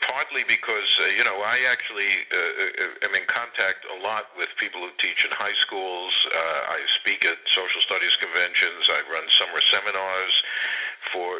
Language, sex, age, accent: English, male, 60-79, American